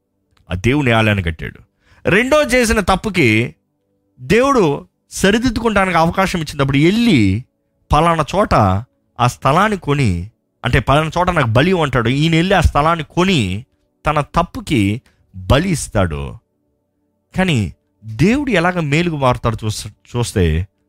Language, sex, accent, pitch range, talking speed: Telugu, male, native, 100-165 Hz, 105 wpm